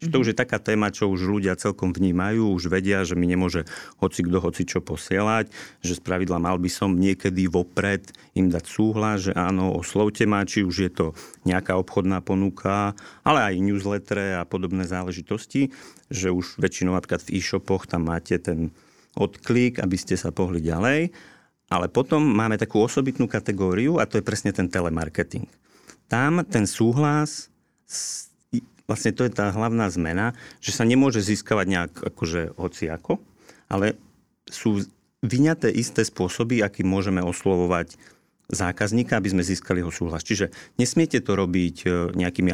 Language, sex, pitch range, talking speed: Slovak, male, 90-110 Hz, 150 wpm